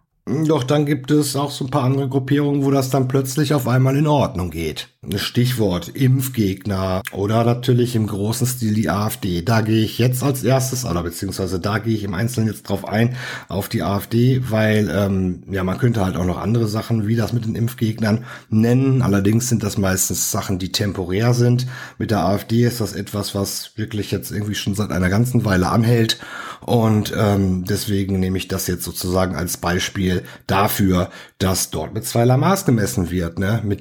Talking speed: 190 wpm